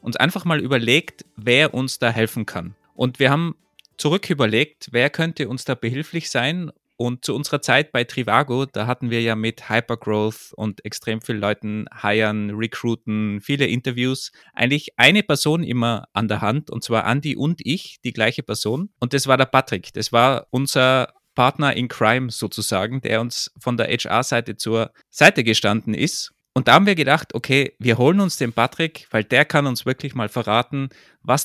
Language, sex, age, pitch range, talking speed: German, male, 20-39, 115-140 Hz, 180 wpm